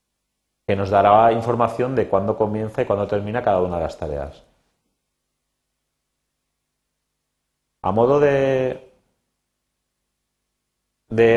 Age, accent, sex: 30-49, Spanish, male